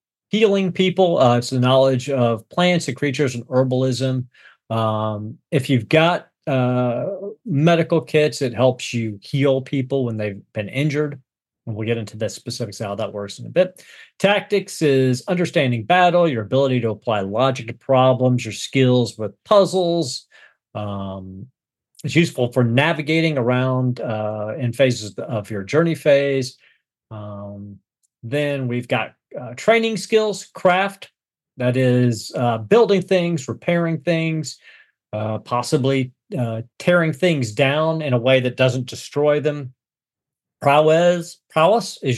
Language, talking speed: English, 140 wpm